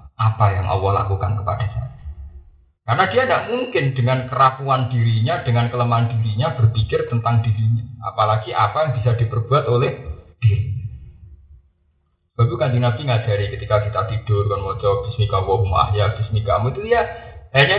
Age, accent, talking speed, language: 30-49, native, 145 wpm, Indonesian